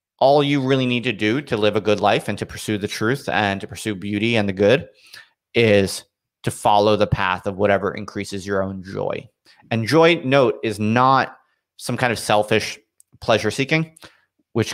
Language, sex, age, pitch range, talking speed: English, male, 30-49, 100-120 Hz, 185 wpm